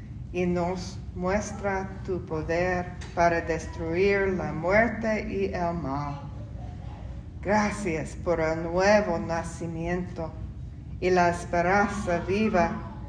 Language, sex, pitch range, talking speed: English, female, 165-195 Hz, 95 wpm